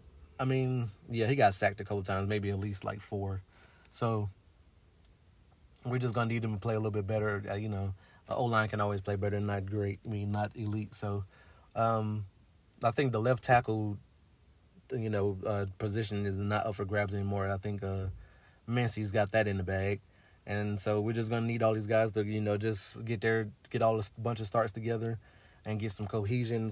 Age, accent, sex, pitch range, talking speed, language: 30-49, American, male, 100-115 Hz, 210 wpm, English